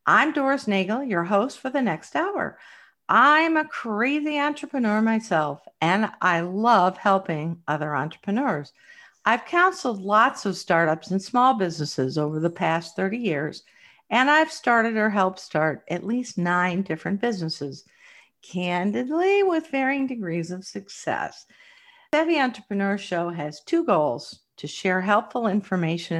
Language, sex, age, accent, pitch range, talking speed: English, female, 50-69, American, 175-280 Hz, 135 wpm